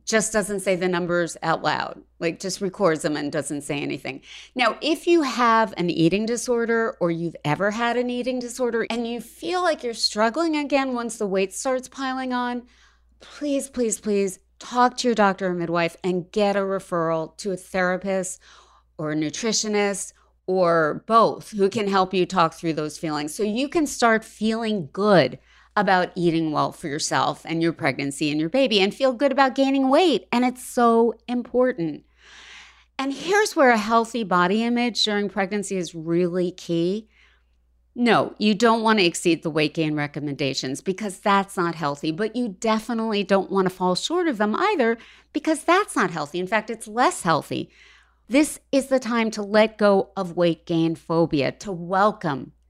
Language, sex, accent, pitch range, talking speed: English, female, American, 170-240 Hz, 175 wpm